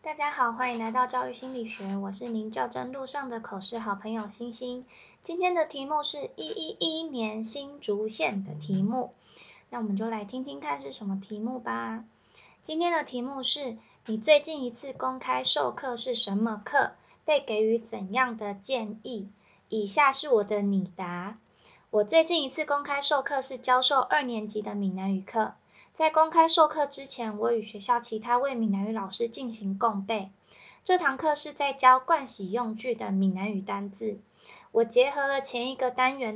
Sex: female